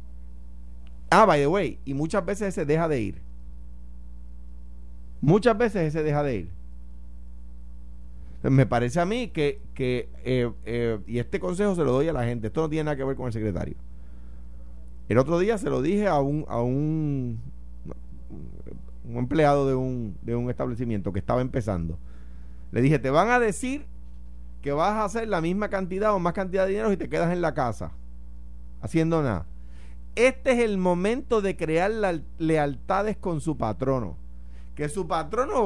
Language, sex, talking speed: Spanish, male, 175 wpm